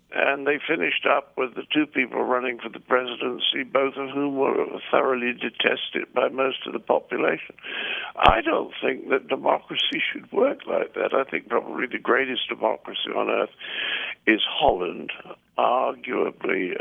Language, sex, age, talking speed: English, male, 60-79, 155 wpm